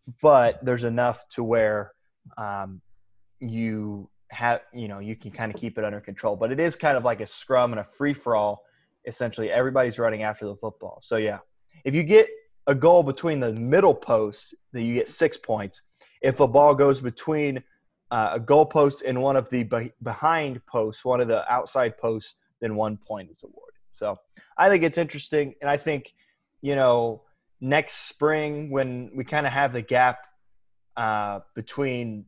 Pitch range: 110-130 Hz